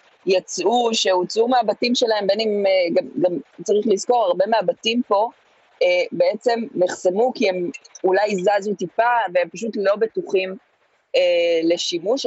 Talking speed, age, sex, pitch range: 120 wpm, 30-49, female, 180-230 Hz